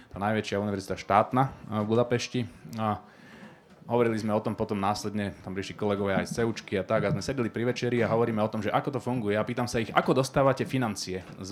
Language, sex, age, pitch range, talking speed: Slovak, male, 30-49, 105-125 Hz, 215 wpm